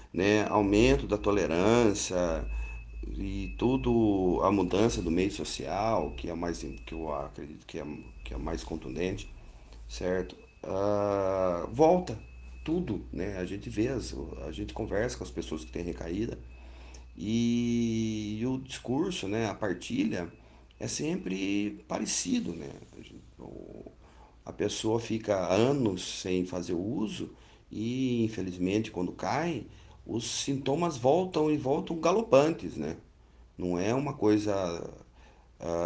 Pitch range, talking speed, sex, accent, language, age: 80-110 Hz, 130 wpm, male, Brazilian, Portuguese, 40-59